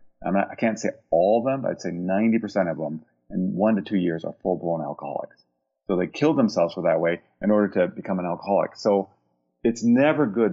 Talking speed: 210 wpm